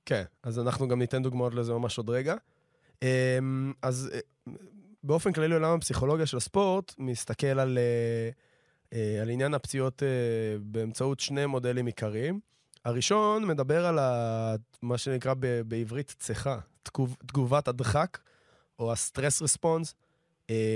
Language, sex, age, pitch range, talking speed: Hebrew, male, 20-39, 115-145 Hz, 115 wpm